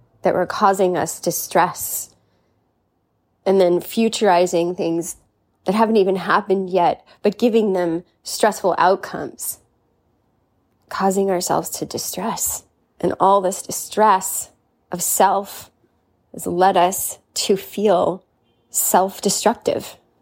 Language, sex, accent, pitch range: English, female, American, 175-200 Hz